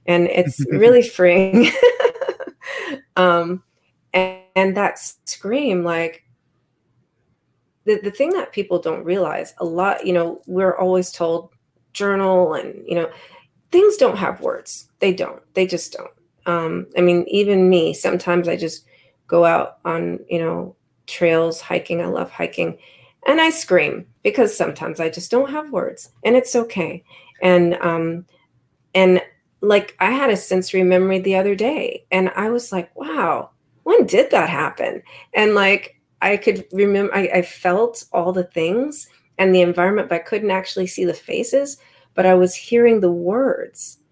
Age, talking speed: 30-49, 160 wpm